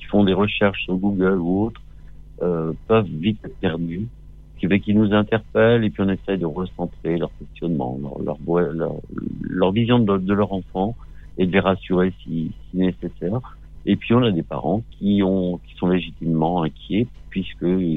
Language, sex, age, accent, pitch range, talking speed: French, male, 50-69, French, 75-95 Hz, 180 wpm